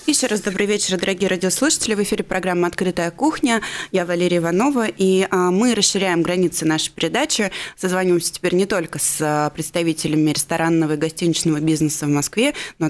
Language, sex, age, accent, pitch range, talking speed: Russian, female, 20-39, native, 160-185 Hz, 155 wpm